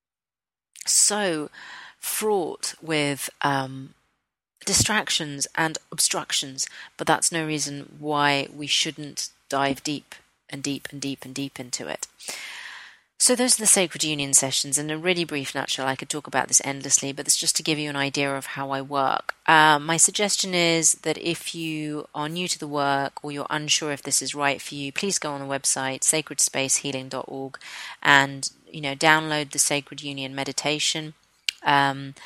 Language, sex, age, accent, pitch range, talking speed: English, female, 30-49, British, 135-150 Hz, 165 wpm